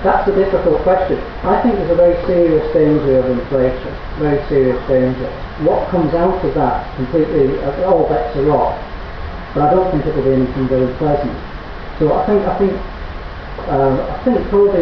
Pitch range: 135-175 Hz